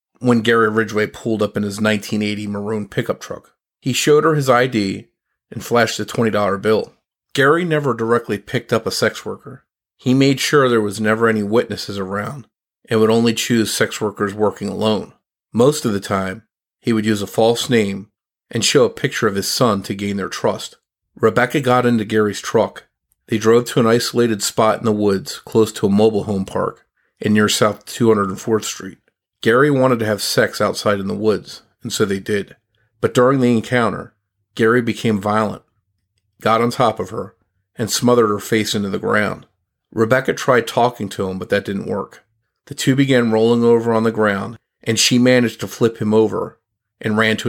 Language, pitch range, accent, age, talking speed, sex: English, 105-120 Hz, American, 40-59, 190 wpm, male